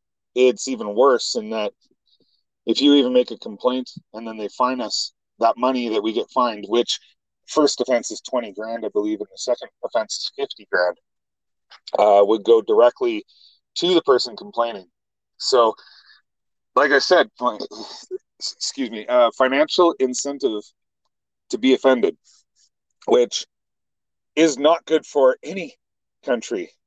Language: English